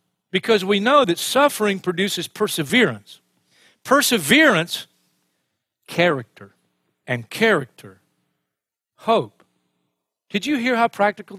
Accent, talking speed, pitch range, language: American, 90 wpm, 130-200 Hz, English